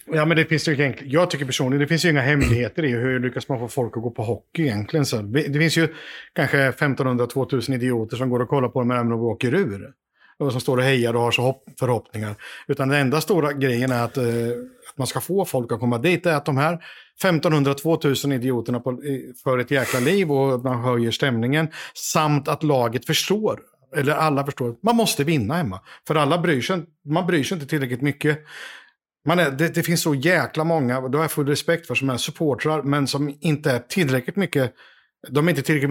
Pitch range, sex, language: 125-155 Hz, male, Swedish